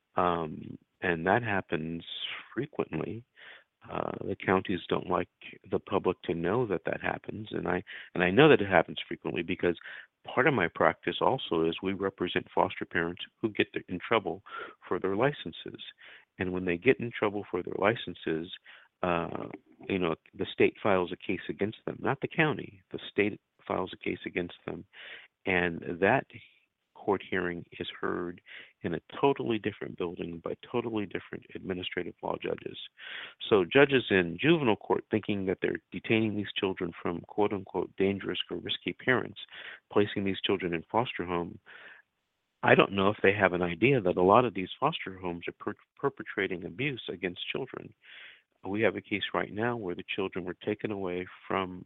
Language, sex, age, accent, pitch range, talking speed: English, male, 50-69, American, 90-105 Hz, 170 wpm